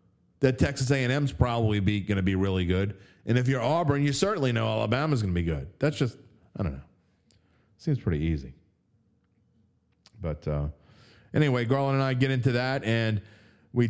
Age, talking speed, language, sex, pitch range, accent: 40-59, 175 wpm, English, male, 90-115 Hz, American